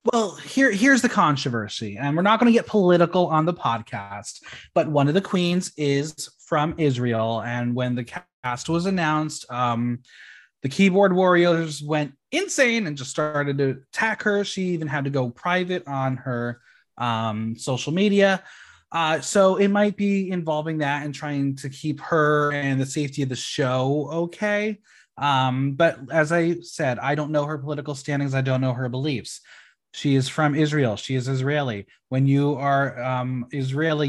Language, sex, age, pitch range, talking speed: English, male, 20-39, 130-175 Hz, 175 wpm